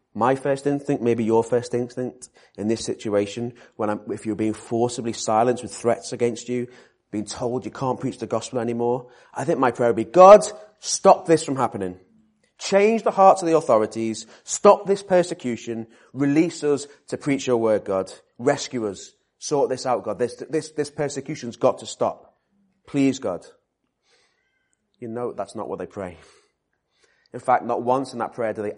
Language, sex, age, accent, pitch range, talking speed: English, male, 30-49, British, 95-125 Hz, 180 wpm